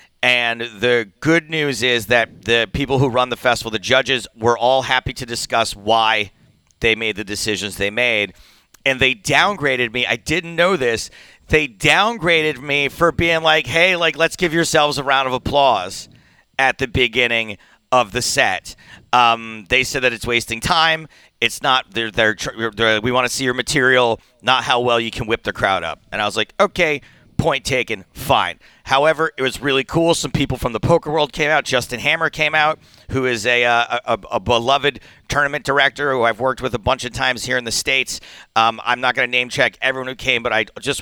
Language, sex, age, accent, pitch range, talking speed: English, male, 40-59, American, 115-145 Hz, 210 wpm